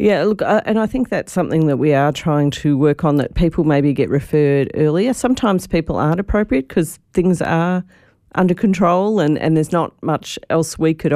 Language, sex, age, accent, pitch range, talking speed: English, female, 40-59, Australian, 135-170 Hz, 205 wpm